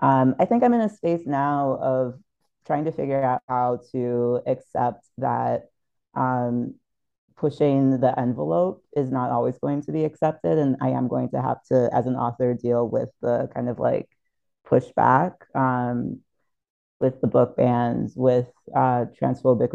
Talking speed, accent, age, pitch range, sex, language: 160 wpm, American, 30-49, 120-135 Hz, female, English